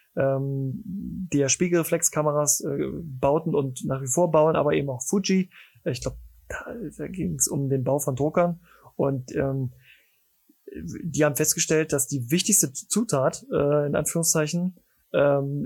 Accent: German